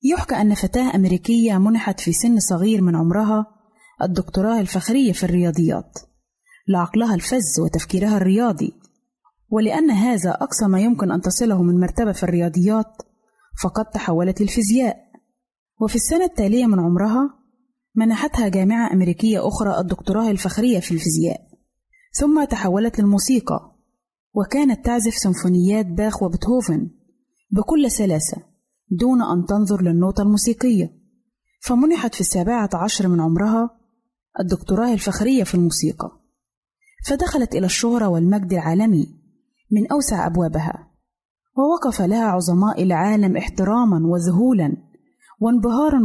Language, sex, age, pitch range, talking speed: Arabic, female, 20-39, 185-235 Hz, 110 wpm